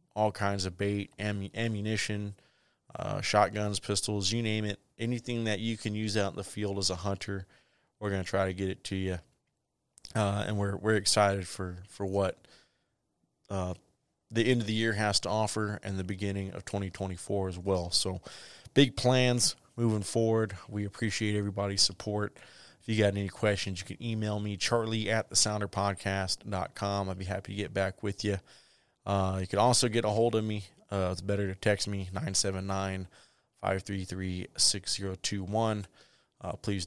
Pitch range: 95-105 Hz